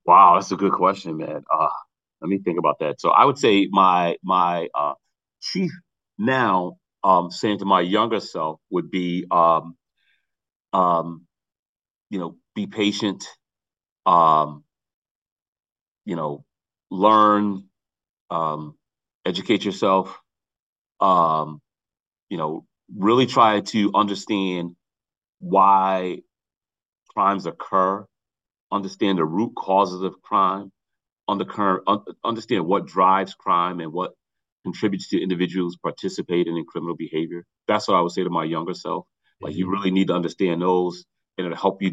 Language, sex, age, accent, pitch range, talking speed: English, male, 30-49, American, 85-95 Hz, 135 wpm